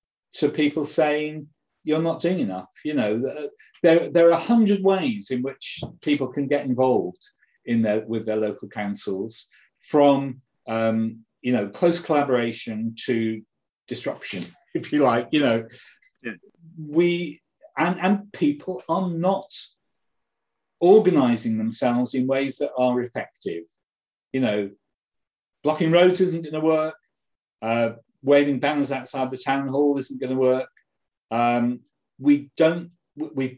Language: English